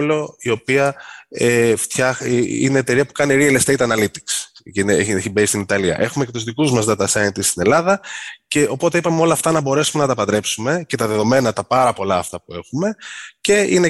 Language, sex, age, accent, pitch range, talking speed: Greek, male, 20-39, native, 105-160 Hz, 200 wpm